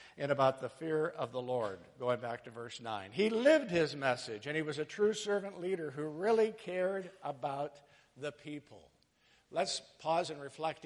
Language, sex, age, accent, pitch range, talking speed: English, male, 50-69, American, 145-205 Hz, 180 wpm